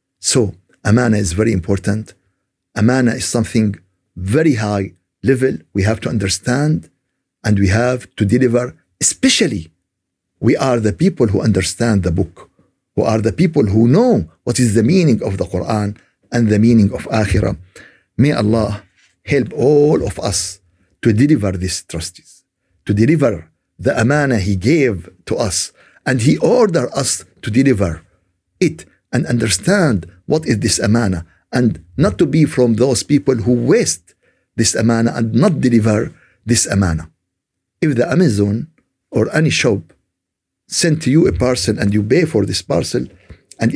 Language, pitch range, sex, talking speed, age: Arabic, 95-125 Hz, male, 150 wpm, 50-69